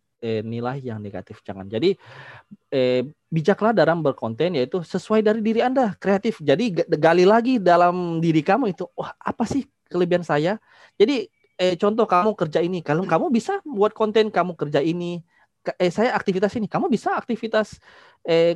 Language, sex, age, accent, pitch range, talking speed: Indonesian, male, 20-39, native, 125-180 Hz, 160 wpm